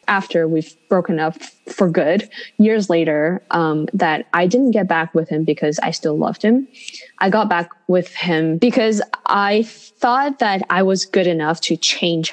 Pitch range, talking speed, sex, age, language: 170-215 Hz, 175 wpm, female, 10-29, English